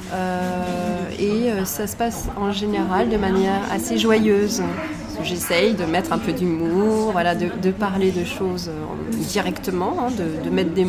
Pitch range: 185-220 Hz